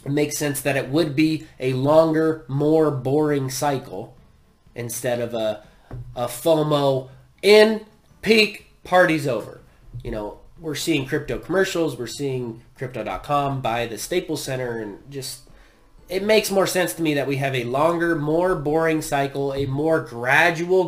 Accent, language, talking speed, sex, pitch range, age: American, English, 150 wpm, male, 130-175 Hz, 20-39